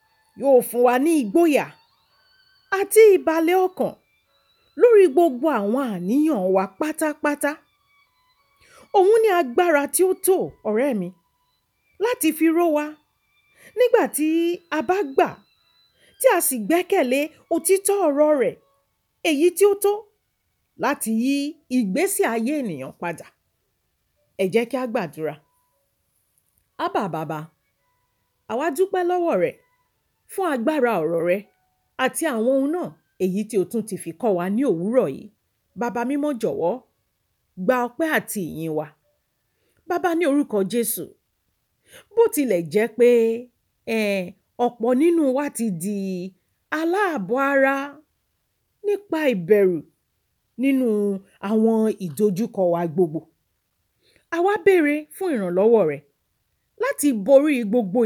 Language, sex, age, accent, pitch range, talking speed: English, female, 40-59, Nigerian, 205-345 Hz, 105 wpm